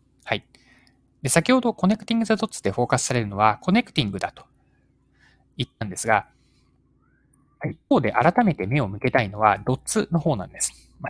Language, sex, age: Japanese, male, 20-39